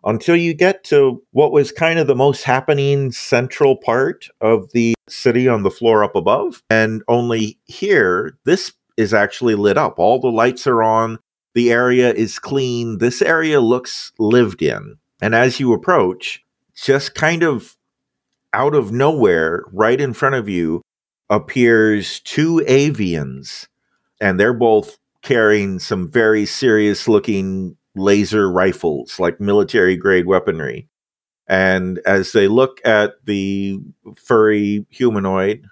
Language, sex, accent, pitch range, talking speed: English, male, American, 100-130 Hz, 140 wpm